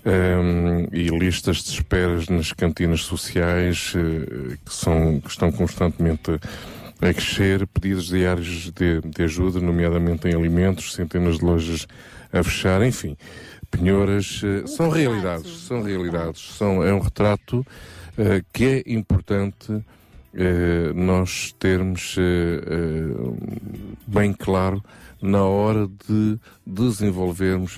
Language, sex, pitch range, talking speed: Portuguese, male, 85-105 Hz, 100 wpm